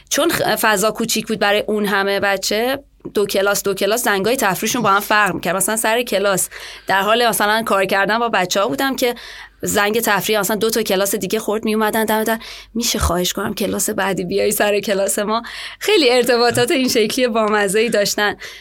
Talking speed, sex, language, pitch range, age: 180 wpm, female, Persian, 195-235 Hz, 20-39